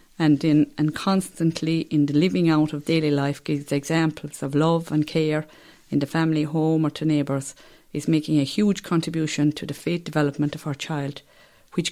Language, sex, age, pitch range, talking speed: English, female, 50-69, 150-170 Hz, 185 wpm